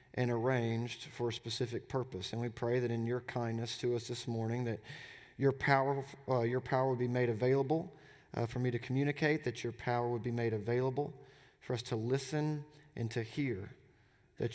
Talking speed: 195 wpm